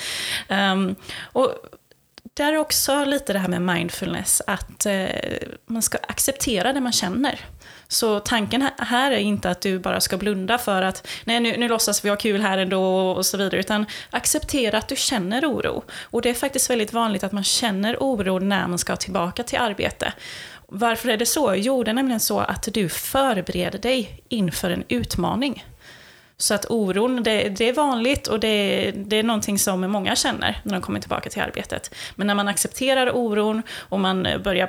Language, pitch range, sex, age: Swedish, 190-245 Hz, female, 20-39